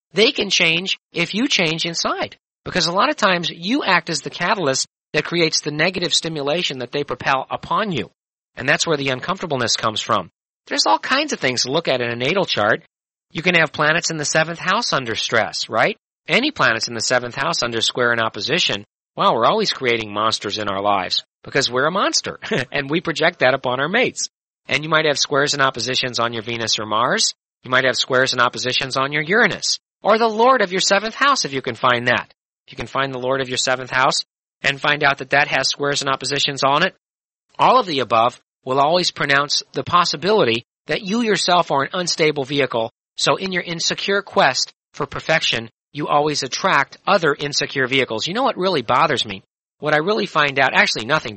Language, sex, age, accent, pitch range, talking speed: English, male, 40-59, American, 130-175 Hz, 215 wpm